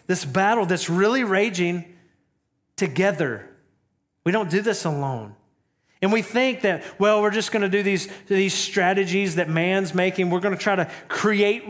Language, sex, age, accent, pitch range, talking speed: English, male, 40-59, American, 170-210 Hz, 170 wpm